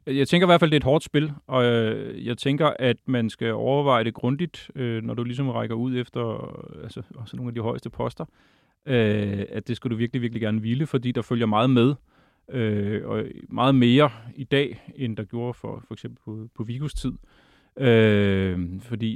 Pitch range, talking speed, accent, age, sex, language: 115-140 Hz, 185 wpm, native, 30-49, male, Danish